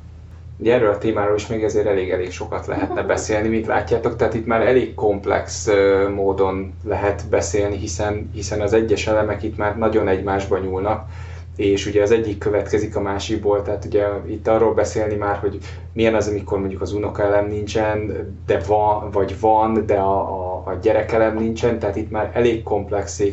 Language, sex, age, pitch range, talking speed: Hungarian, male, 20-39, 100-110 Hz, 170 wpm